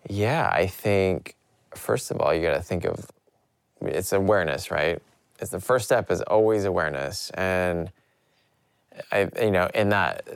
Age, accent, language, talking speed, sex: 20-39, American, English, 155 wpm, male